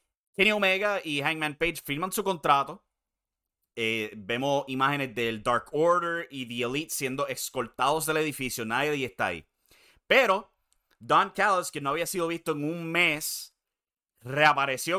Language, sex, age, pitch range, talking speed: English, male, 30-49, 115-155 Hz, 150 wpm